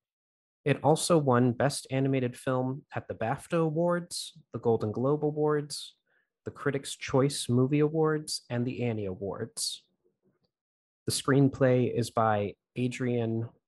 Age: 20-39